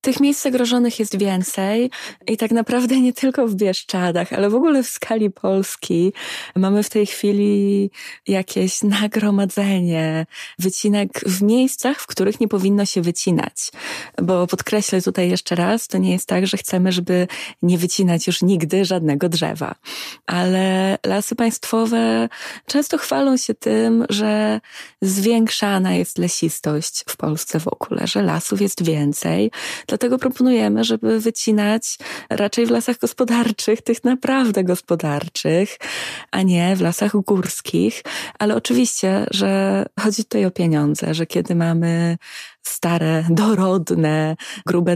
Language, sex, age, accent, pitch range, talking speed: Polish, female, 20-39, native, 175-220 Hz, 130 wpm